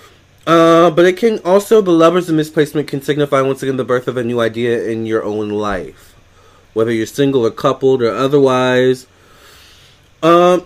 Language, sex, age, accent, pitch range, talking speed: English, male, 20-39, American, 110-145 Hz, 175 wpm